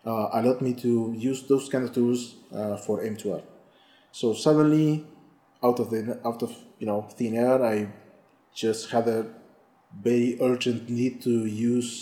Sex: male